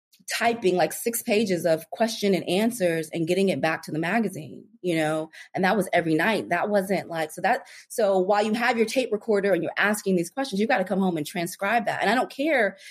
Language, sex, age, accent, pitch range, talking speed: English, female, 20-39, American, 160-205 Hz, 235 wpm